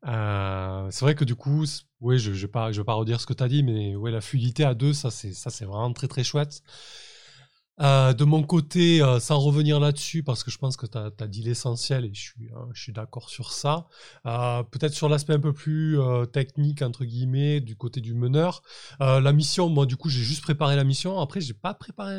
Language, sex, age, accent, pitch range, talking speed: French, male, 20-39, French, 120-150 Hz, 245 wpm